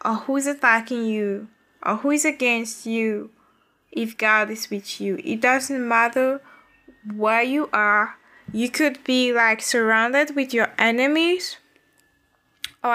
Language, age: English, 10-29